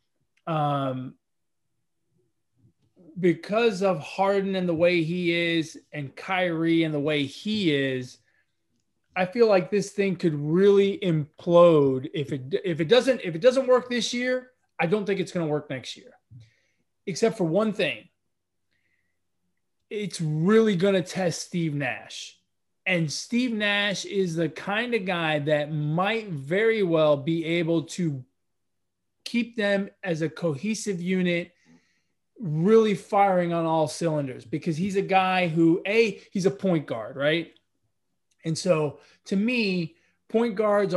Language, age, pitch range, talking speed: English, 20-39, 150-195 Hz, 145 wpm